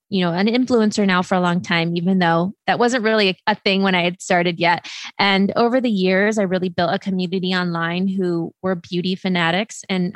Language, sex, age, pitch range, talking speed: English, female, 20-39, 180-205 Hz, 215 wpm